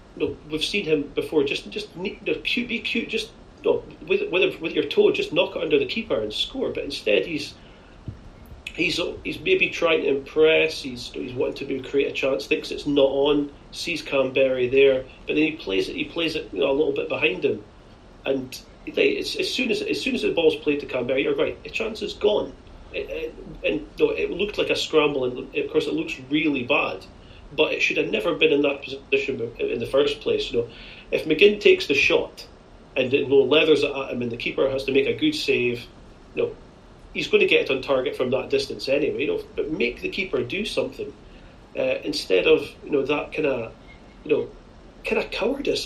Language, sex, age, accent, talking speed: English, male, 40-59, British, 230 wpm